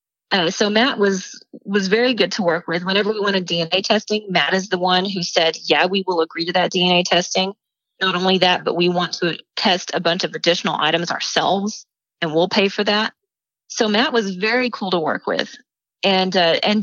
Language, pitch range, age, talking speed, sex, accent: English, 170-205 Hz, 30-49, 210 wpm, female, American